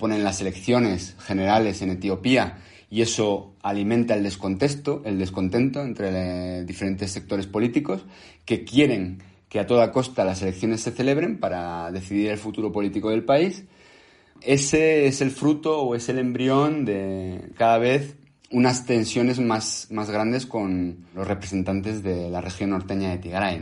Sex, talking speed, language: male, 145 wpm, Spanish